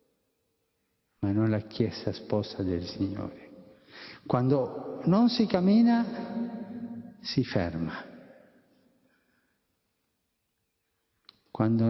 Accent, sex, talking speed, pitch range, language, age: native, male, 70 wpm, 100-140 Hz, Italian, 50-69